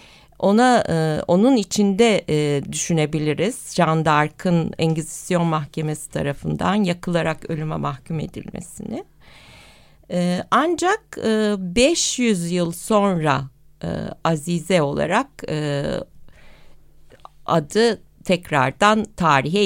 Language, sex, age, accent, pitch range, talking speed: Turkish, female, 60-79, native, 165-230 Hz, 85 wpm